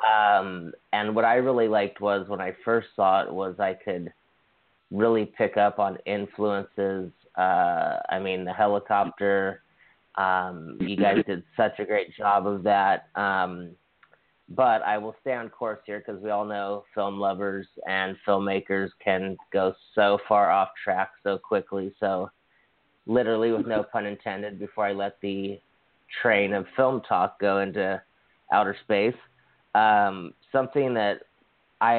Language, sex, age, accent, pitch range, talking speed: English, male, 30-49, American, 95-115 Hz, 150 wpm